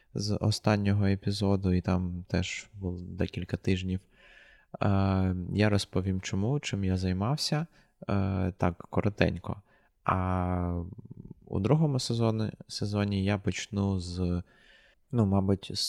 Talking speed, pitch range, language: 95 wpm, 90-105 Hz, Ukrainian